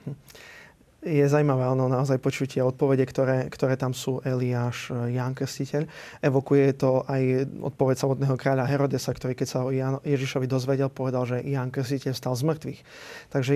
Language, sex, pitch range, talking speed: Slovak, male, 130-145 Hz, 150 wpm